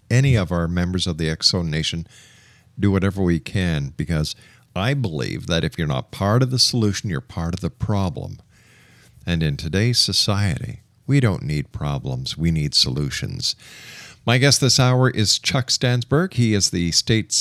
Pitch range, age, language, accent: 90-120 Hz, 50-69, English, American